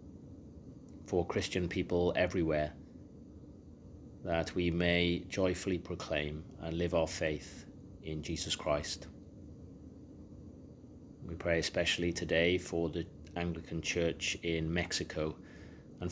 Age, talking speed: 30-49, 100 wpm